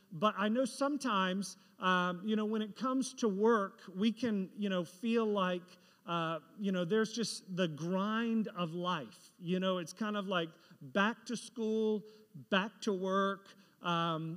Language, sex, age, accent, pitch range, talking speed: English, male, 40-59, American, 185-225 Hz, 165 wpm